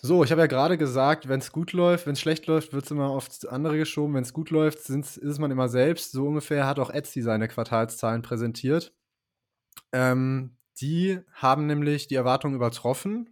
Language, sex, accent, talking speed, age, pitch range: German, male, German, 200 wpm, 20-39, 120-140 Hz